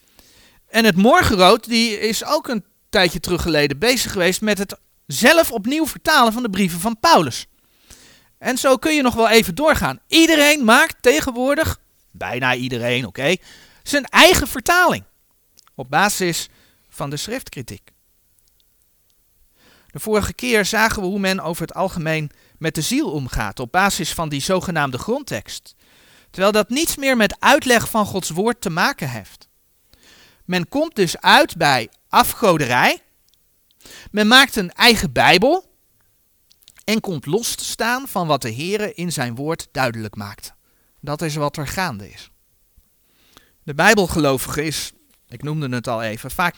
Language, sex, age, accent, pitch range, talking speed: Dutch, male, 40-59, Dutch, 145-230 Hz, 150 wpm